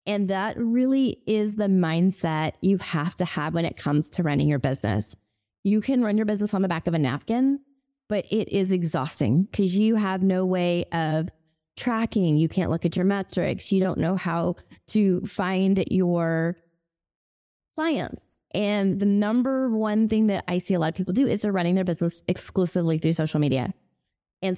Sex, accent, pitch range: female, American, 170-205 Hz